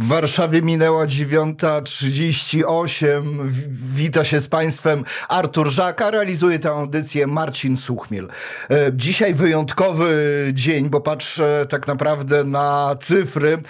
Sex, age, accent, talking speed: male, 40-59, native, 105 wpm